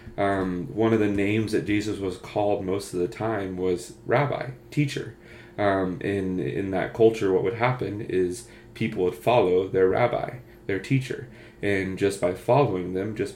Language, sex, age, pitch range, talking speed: English, male, 30-49, 95-115 Hz, 165 wpm